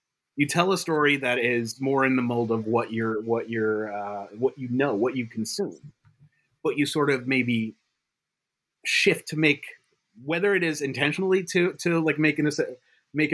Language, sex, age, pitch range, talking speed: English, male, 30-49, 120-155 Hz, 180 wpm